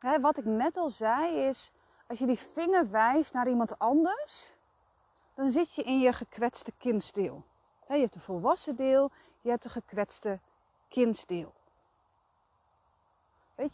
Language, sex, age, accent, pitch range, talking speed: Dutch, female, 30-49, Dutch, 205-270 Hz, 140 wpm